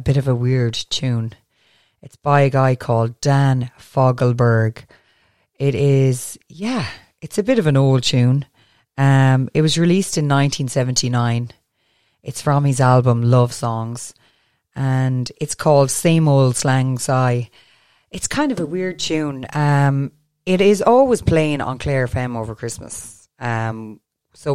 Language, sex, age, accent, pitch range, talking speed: English, female, 30-49, Irish, 115-140 Hz, 145 wpm